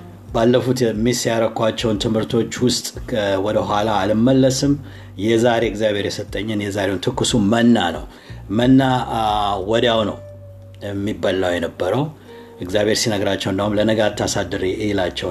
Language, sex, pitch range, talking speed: Amharic, male, 95-125 Hz, 100 wpm